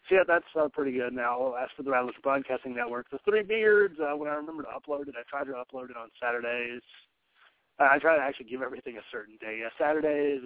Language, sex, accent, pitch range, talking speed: English, male, American, 115-140 Hz, 240 wpm